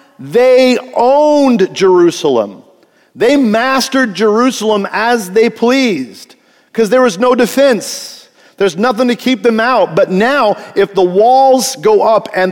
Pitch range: 170-240 Hz